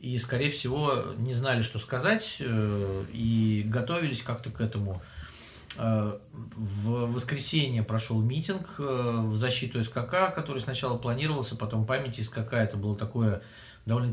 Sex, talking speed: male, 125 wpm